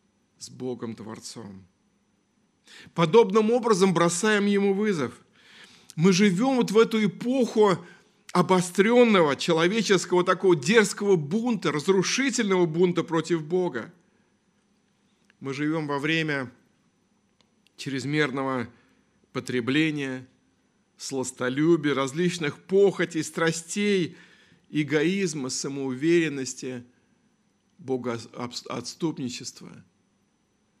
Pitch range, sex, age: 130-195 Hz, male, 50-69